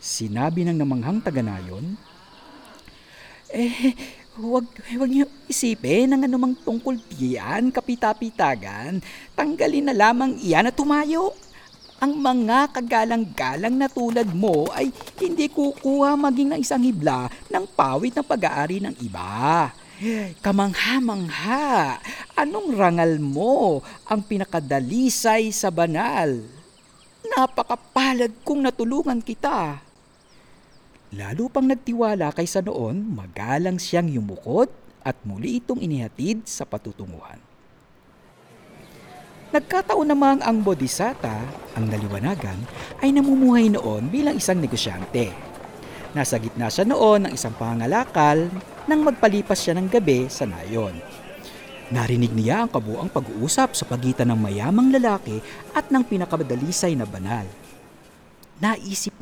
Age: 50-69